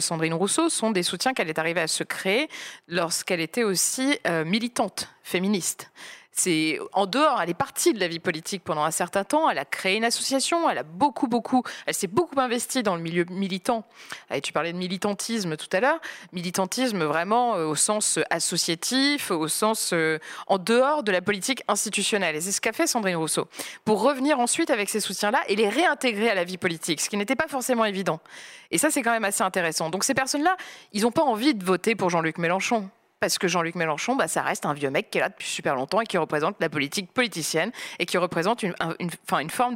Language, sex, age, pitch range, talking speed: French, female, 20-39, 175-240 Hz, 220 wpm